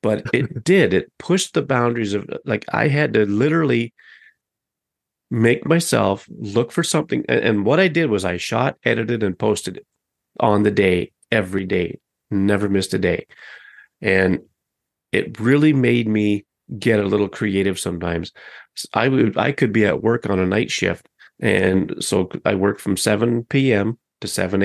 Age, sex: 30-49, male